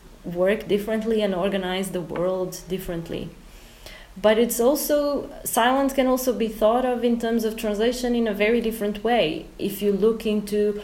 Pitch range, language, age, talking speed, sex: 185-210 Hz, English, 30-49, 160 wpm, female